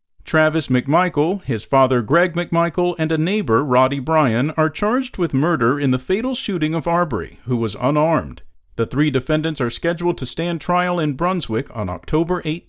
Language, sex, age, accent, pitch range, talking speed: English, male, 50-69, American, 130-180 Hz, 170 wpm